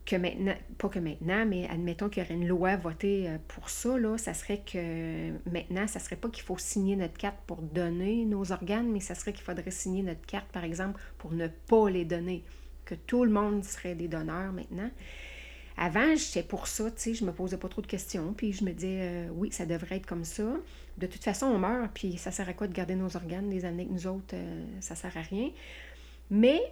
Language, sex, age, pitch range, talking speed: French, female, 30-49, 175-210 Hz, 235 wpm